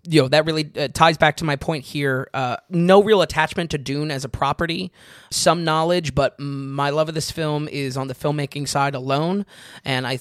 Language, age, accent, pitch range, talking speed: English, 20-39, American, 130-165 Hz, 210 wpm